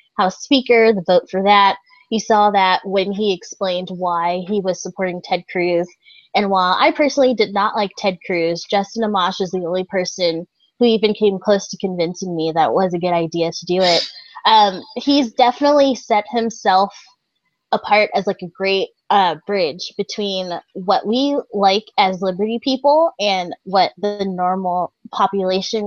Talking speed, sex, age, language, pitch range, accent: 170 wpm, female, 20-39, English, 180-230 Hz, American